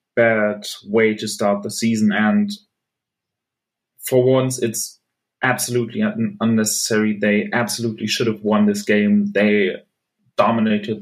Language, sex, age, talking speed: English, male, 20-39, 115 wpm